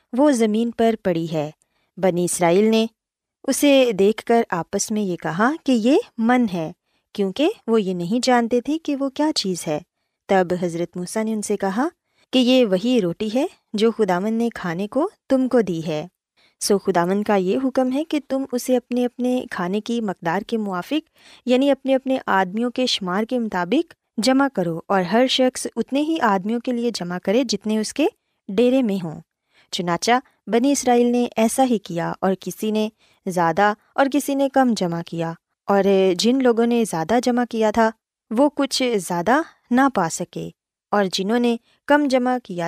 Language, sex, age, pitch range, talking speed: Urdu, female, 20-39, 190-255 Hz, 185 wpm